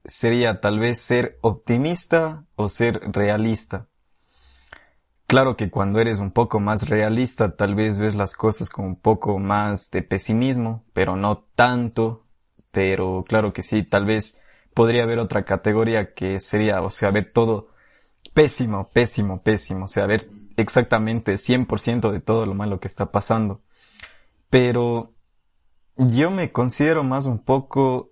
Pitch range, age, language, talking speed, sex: 100-120 Hz, 20-39, Spanish, 145 wpm, male